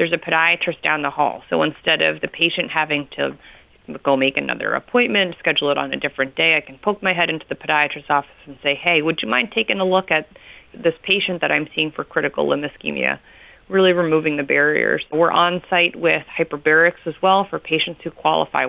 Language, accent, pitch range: English, American, 150-180 Hz